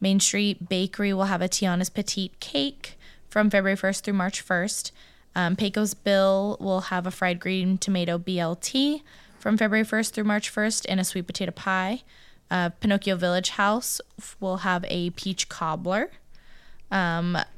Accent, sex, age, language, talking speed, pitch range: American, female, 20-39, English, 155 wpm, 175-205 Hz